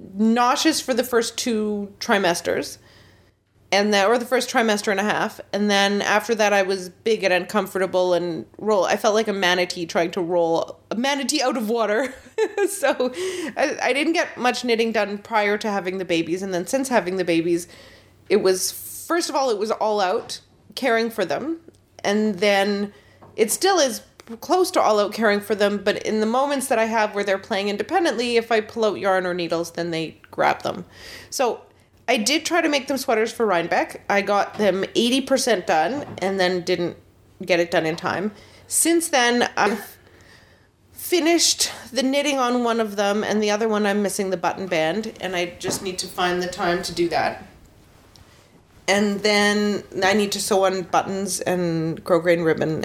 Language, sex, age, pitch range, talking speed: English, female, 30-49, 180-235 Hz, 190 wpm